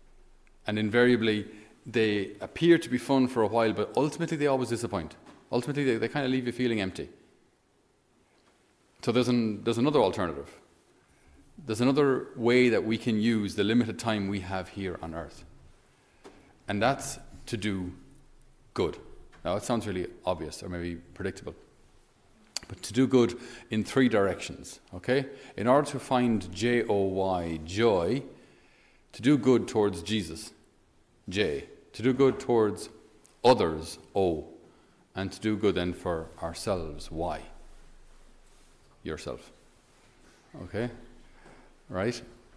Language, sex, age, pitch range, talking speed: English, male, 40-59, 100-130 Hz, 135 wpm